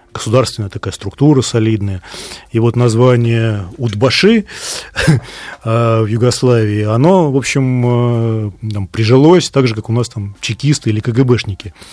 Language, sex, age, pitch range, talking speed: Russian, male, 30-49, 105-125 Hz, 120 wpm